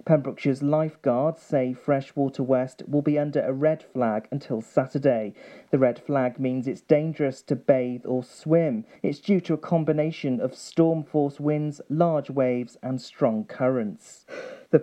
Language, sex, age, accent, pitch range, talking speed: English, male, 40-59, British, 135-165 Hz, 155 wpm